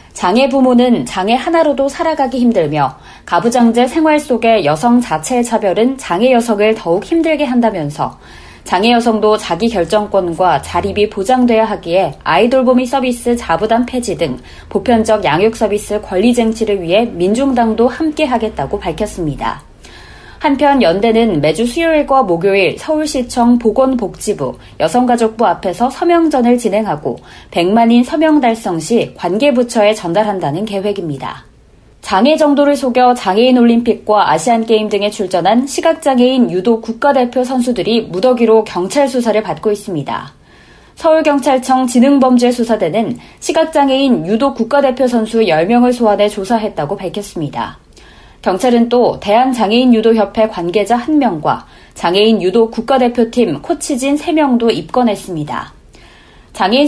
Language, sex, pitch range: Korean, female, 205-260 Hz